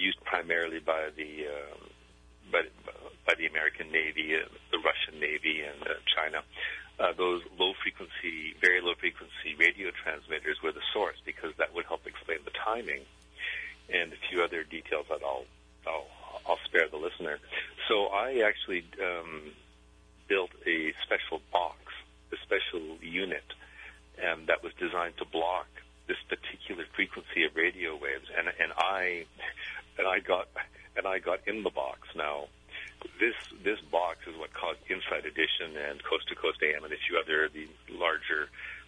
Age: 50-69